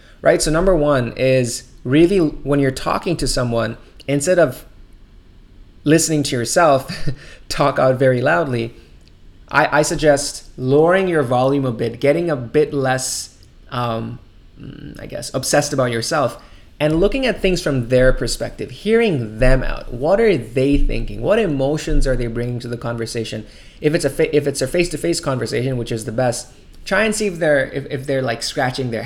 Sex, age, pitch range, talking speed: male, 20-39, 120-155 Hz, 170 wpm